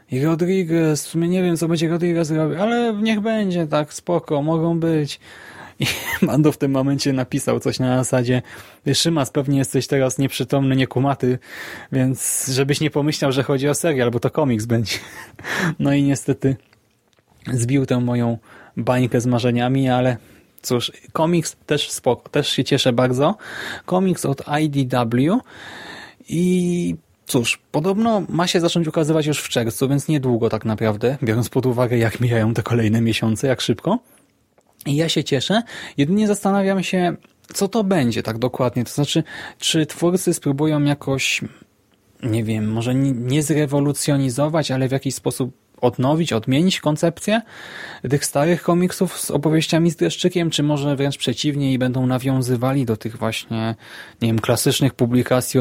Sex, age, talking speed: male, 20-39, 150 wpm